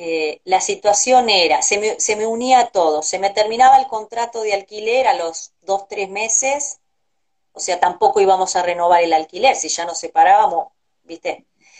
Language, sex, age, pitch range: Spanish, female, 30-49, 175-245 Hz